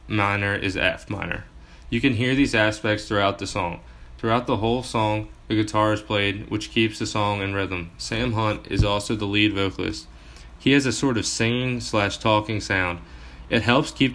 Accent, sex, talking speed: American, male, 190 wpm